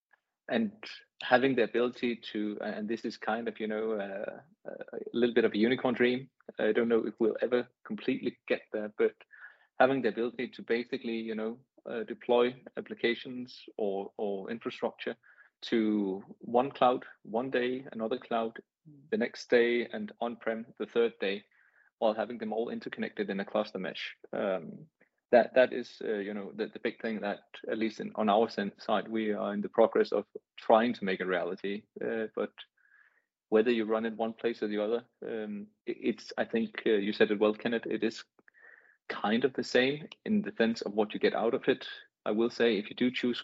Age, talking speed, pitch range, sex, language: 30-49, 195 wpm, 110-125 Hz, male, English